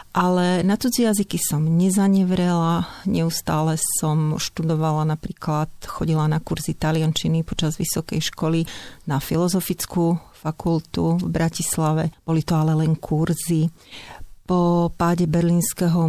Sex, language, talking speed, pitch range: female, Slovak, 110 wpm, 160-180 Hz